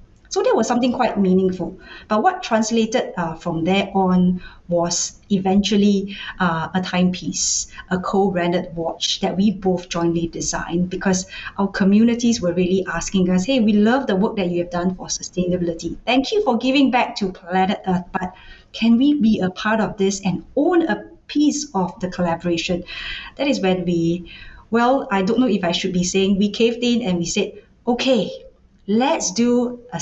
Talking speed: 180 wpm